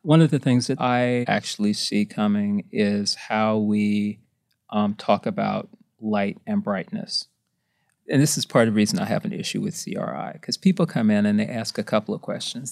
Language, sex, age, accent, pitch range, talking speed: English, male, 40-59, American, 110-155 Hz, 200 wpm